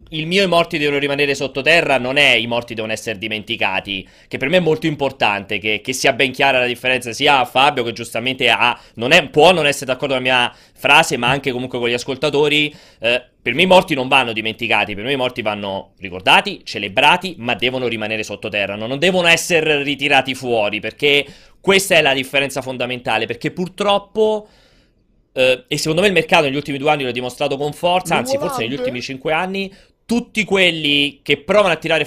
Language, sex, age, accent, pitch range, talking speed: Italian, male, 30-49, native, 120-165 Hz, 205 wpm